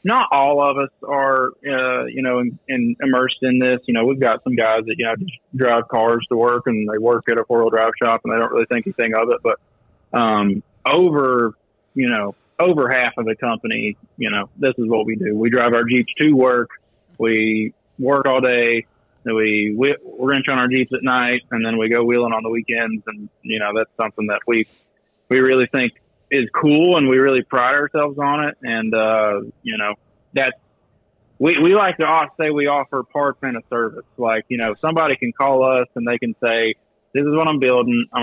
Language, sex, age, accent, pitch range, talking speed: English, male, 20-39, American, 115-135 Hz, 220 wpm